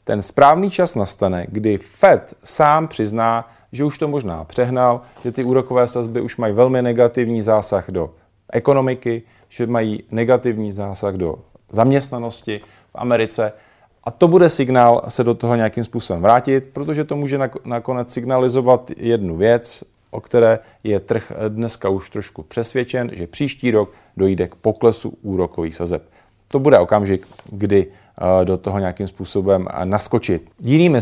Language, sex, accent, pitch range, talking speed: Czech, male, native, 105-135 Hz, 145 wpm